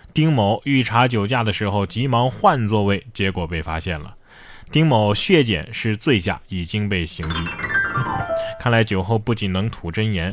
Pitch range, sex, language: 100-145 Hz, male, Chinese